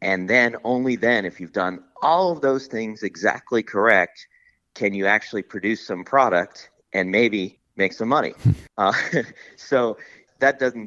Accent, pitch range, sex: American, 90-120 Hz, male